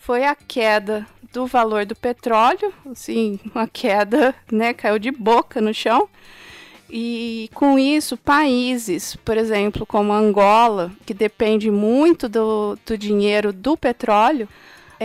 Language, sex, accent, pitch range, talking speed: Portuguese, female, Brazilian, 210-245 Hz, 130 wpm